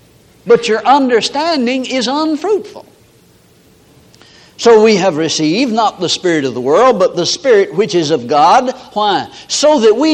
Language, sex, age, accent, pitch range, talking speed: English, male, 60-79, American, 190-265 Hz, 155 wpm